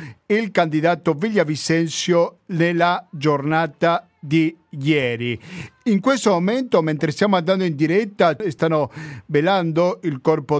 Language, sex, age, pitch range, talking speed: Italian, male, 50-69, 150-190 Hz, 110 wpm